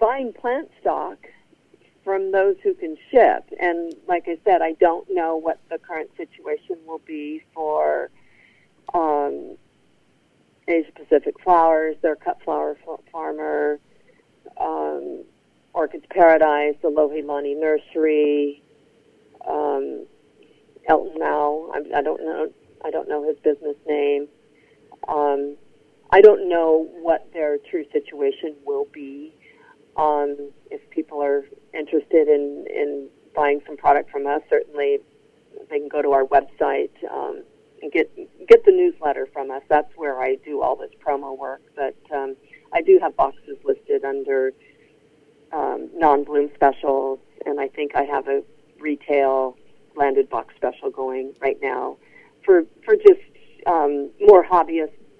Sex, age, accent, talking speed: female, 50-69, American, 135 wpm